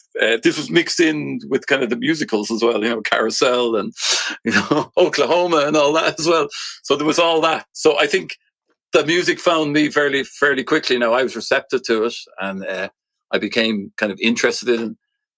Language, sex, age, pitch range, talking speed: English, male, 40-59, 115-170 Hz, 210 wpm